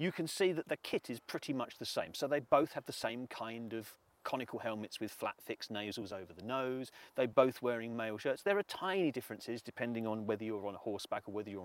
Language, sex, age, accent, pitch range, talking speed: English, male, 40-59, British, 110-140 Hz, 240 wpm